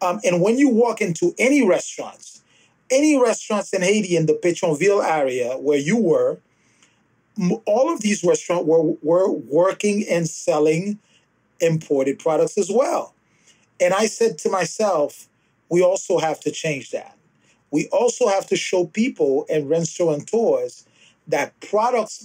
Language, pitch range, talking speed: English, 160-230 Hz, 145 wpm